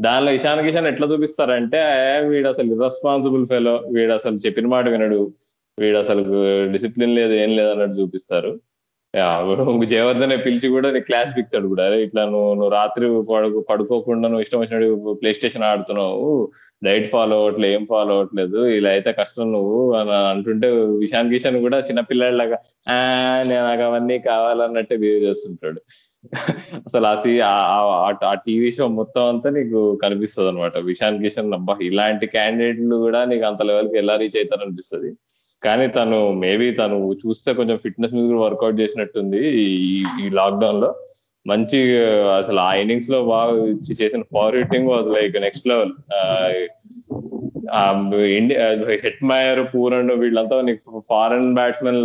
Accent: native